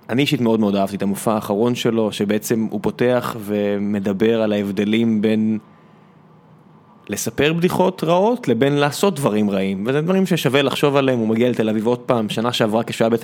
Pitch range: 110-140 Hz